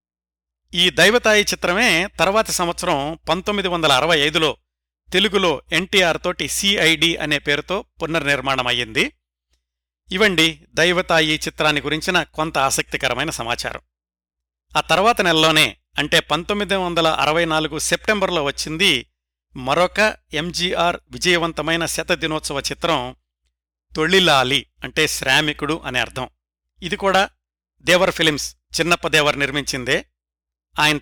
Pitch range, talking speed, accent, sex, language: 125-175 Hz, 95 wpm, native, male, Telugu